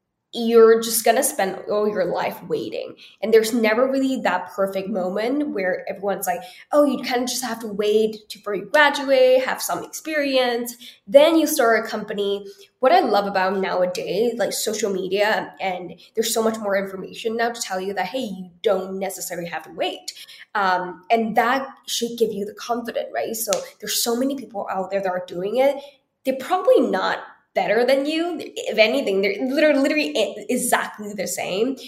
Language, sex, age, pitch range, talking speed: English, female, 10-29, 195-255 Hz, 185 wpm